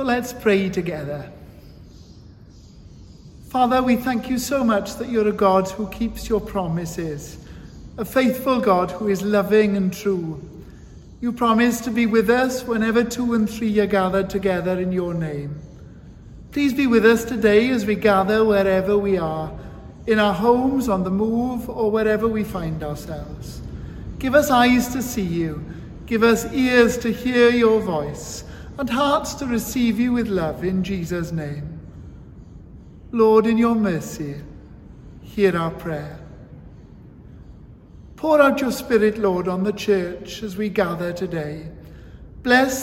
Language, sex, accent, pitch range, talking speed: English, male, British, 190-235 Hz, 150 wpm